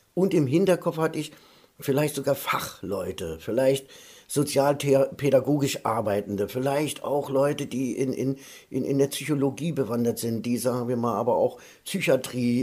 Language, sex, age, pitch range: German, male, 50-69, 125-165 Hz